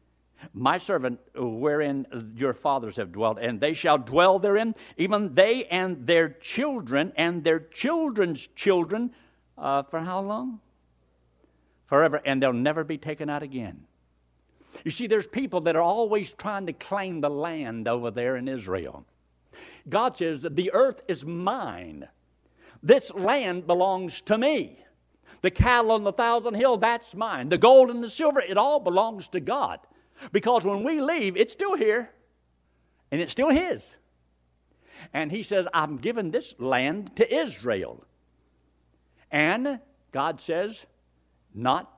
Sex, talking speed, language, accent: male, 145 wpm, English, American